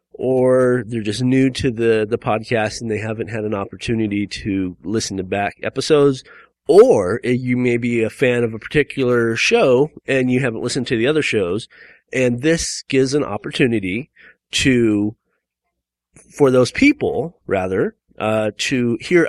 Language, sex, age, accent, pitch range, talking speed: English, male, 30-49, American, 110-160 Hz, 155 wpm